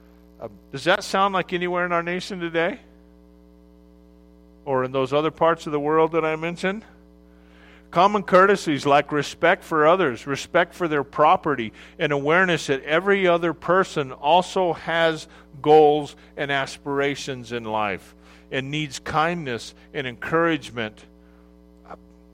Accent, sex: American, male